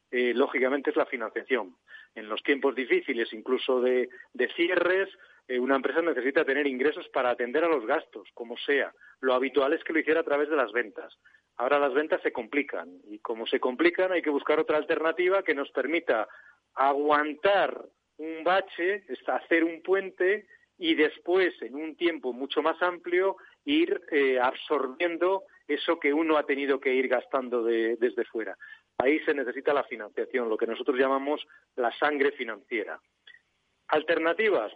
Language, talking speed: Spanish, 160 wpm